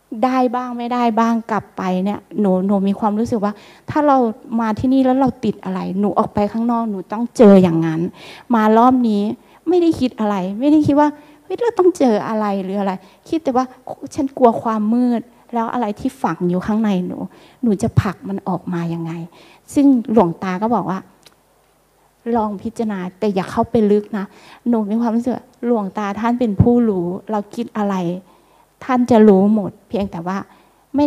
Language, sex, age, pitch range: Thai, female, 20-39, 195-240 Hz